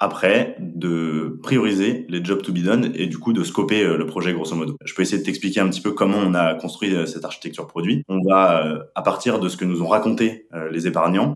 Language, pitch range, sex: French, 85-115 Hz, male